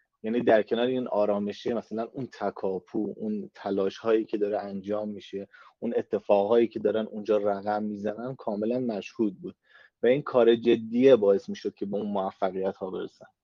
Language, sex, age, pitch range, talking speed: Persian, male, 30-49, 105-125 Hz, 170 wpm